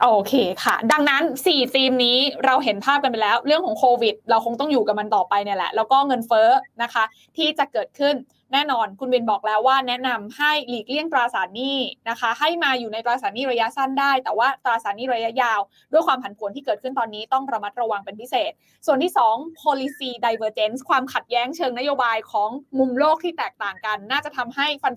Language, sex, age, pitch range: Thai, female, 20-39, 230-285 Hz